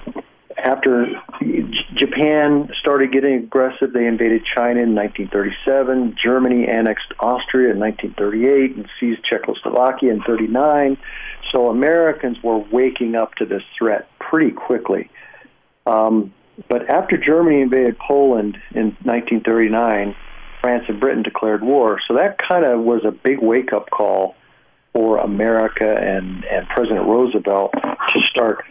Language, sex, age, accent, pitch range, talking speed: English, male, 50-69, American, 110-135 Hz, 125 wpm